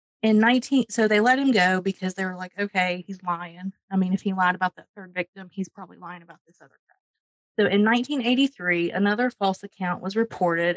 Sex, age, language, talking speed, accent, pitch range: female, 30-49, English, 210 wpm, American, 185-230 Hz